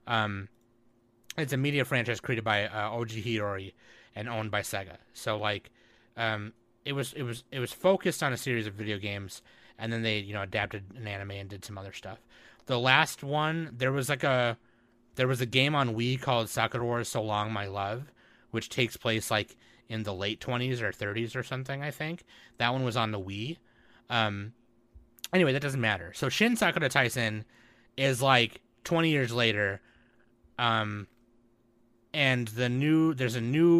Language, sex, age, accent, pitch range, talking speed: English, male, 30-49, American, 105-125 Hz, 185 wpm